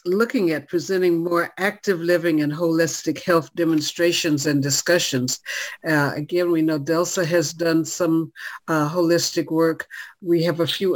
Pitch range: 155-180 Hz